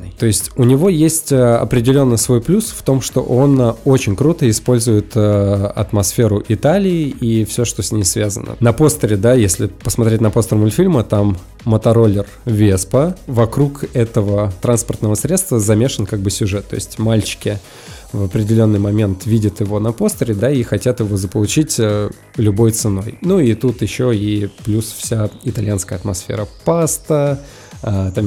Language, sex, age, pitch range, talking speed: Russian, male, 20-39, 105-130 Hz, 150 wpm